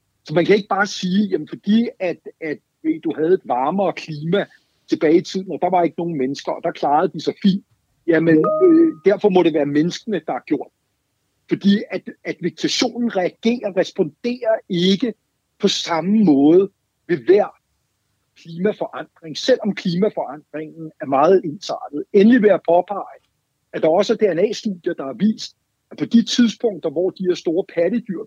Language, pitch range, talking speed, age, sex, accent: Danish, 165-230 Hz, 170 wpm, 60-79, male, native